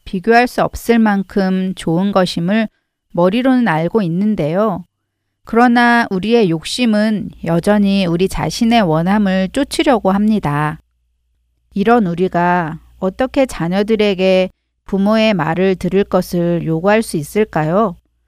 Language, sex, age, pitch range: Korean, female, 40-59, 165-220 Hz